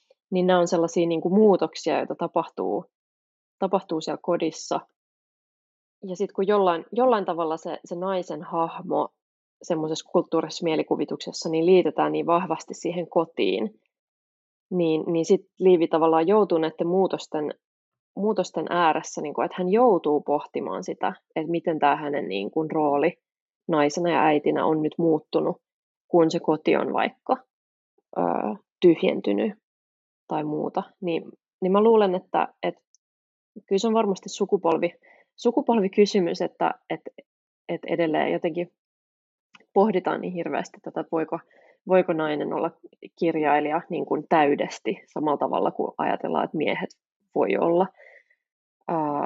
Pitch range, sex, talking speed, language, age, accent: 160-190 Hz, female, 130 wpm, Finnish, 20-39, native